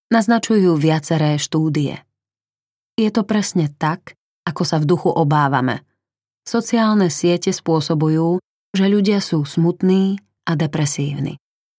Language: Slovak